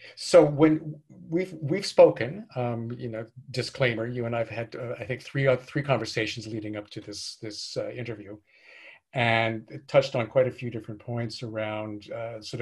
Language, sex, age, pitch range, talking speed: English, male, 40-59, 110-130 Hz, 190 wpm